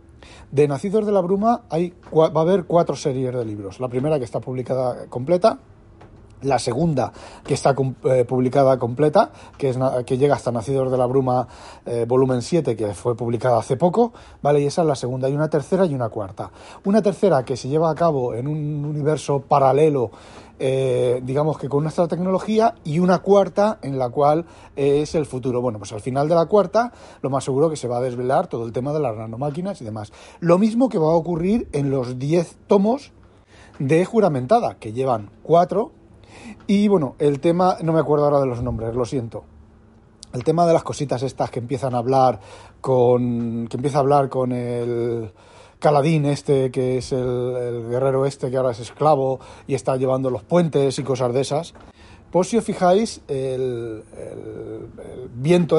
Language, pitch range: Spanish, 125-165 Hz